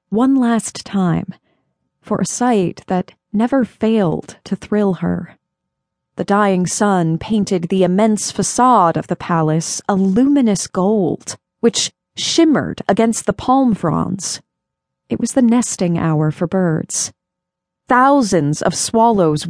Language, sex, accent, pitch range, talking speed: English, female, American, 180-235 Hz, 125 wpm